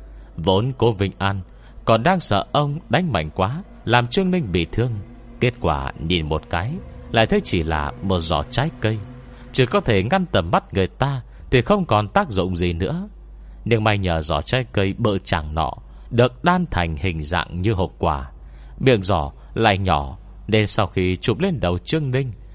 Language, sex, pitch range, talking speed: Vietnamese, male, 85-125 Hz, 195 wpm